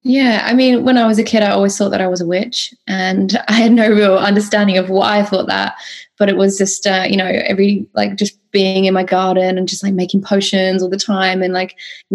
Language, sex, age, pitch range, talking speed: English, female, 20-39, 190-210 Hz, 255 wpm